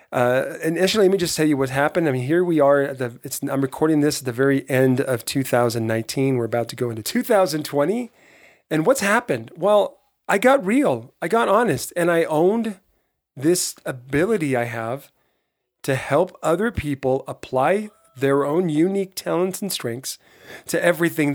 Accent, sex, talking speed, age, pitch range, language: American, male, 175 wpm, 40-59, 125-170 Hz, English